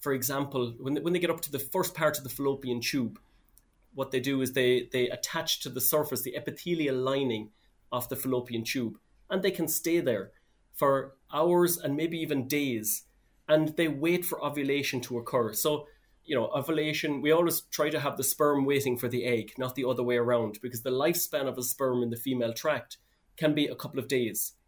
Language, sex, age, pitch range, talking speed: English, male, 30-49, 125-155 Hz, 210 wpm